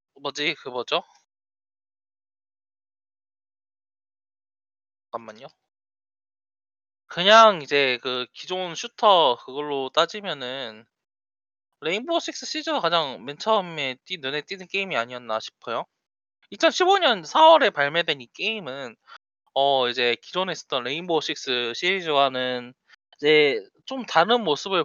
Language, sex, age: Korean, male, 20-39